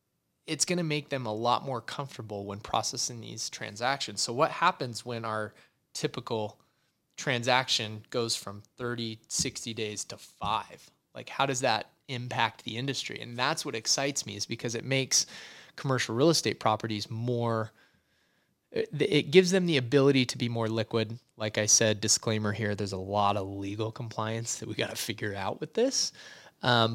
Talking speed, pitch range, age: 165 wpm, 110-125 Hz, 20-39